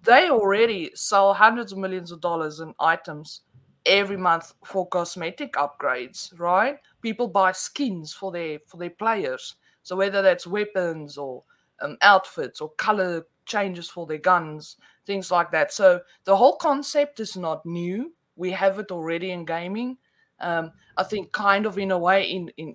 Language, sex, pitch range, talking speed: English, female, 175-215 Hz, 165 wpm